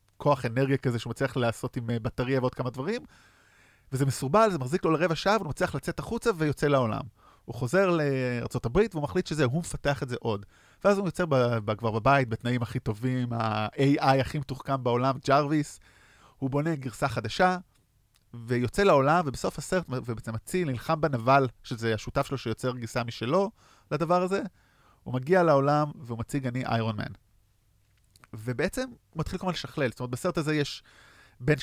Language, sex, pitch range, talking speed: Hebrew, male, 120-160 Hz, 155 wpm